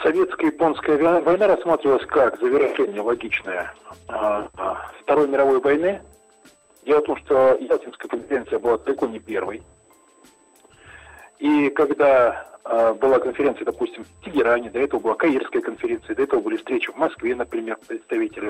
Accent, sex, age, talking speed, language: native, male, 40-59, 125 wpm, Russian